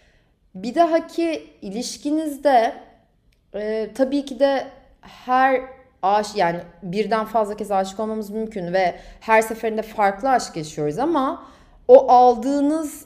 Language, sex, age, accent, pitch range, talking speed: Turkish, female, 30-49, native, 200-270 Hz, 115 wpm